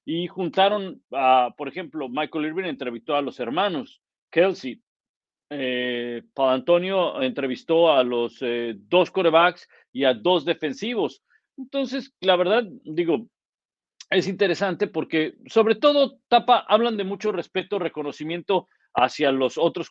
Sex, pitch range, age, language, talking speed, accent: male, 135-190 Hz, 50-69, Spanish, 130 wpm, Mexican